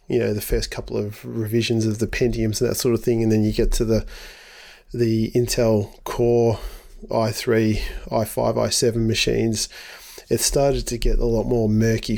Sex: male